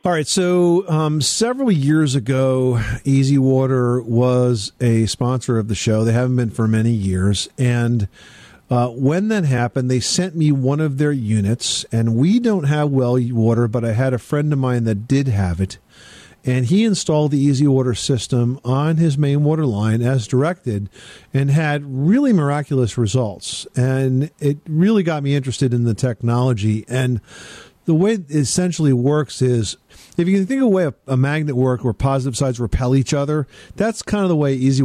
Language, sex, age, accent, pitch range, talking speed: English, male, 50-69, American, 120-150 Hz, 185 wpm